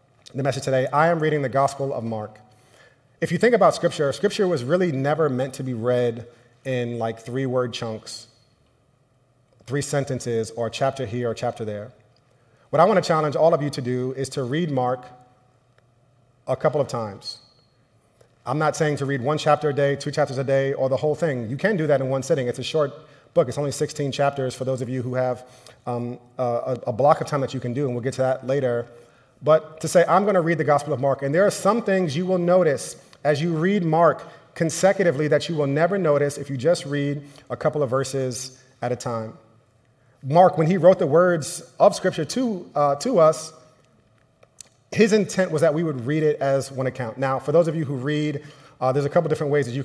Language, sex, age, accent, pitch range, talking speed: English, male, 30-49, American, 125-155 Hz, 225 wpm